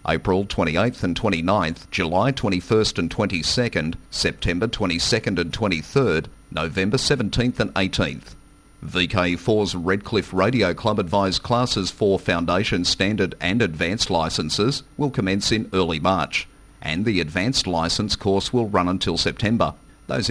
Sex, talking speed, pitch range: male, 125 wpm, 85-115 Hz